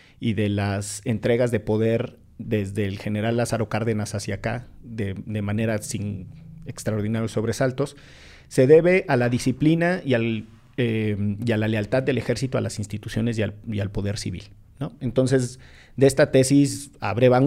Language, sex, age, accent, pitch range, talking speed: Spanish, male, 40-59, Mexican, 110-130 Hz, 150 wpm